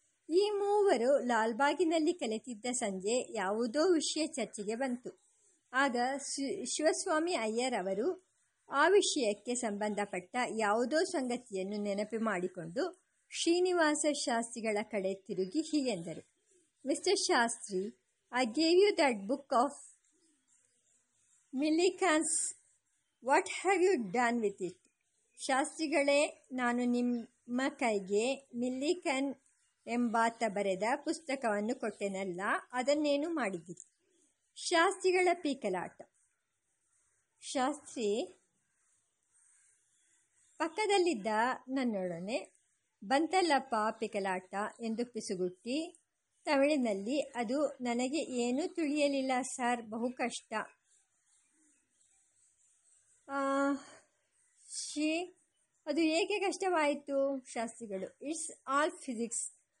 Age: 50-69